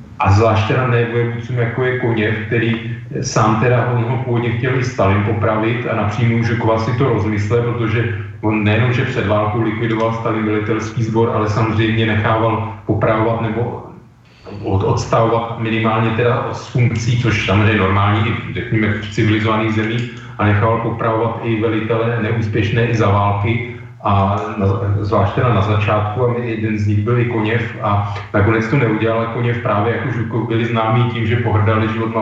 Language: Slovak